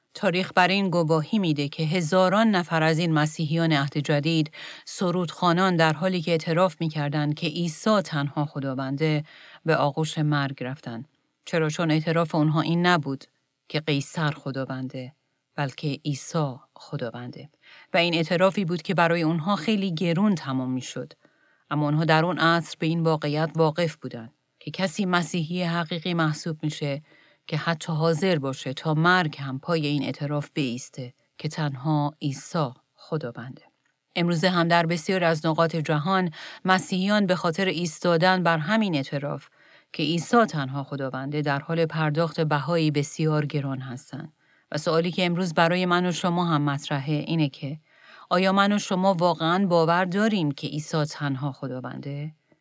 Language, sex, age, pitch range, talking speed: Persian, female, 40-59, 145-175 Hz, 145 wpm